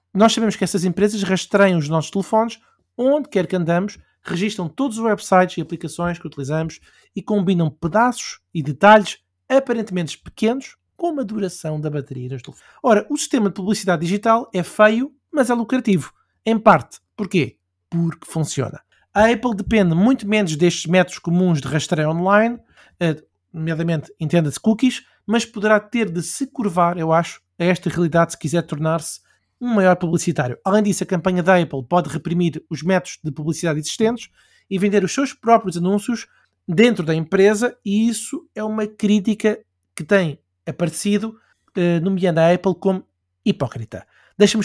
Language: Portuguese